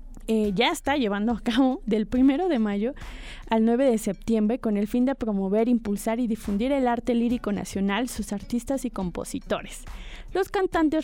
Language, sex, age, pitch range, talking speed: Spanish, female, 20-39, 210-260 Hz, 175 wpm